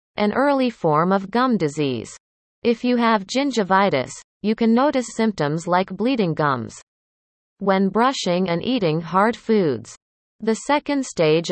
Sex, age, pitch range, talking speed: female, 30-49, 170-230 Hz, 135 wpm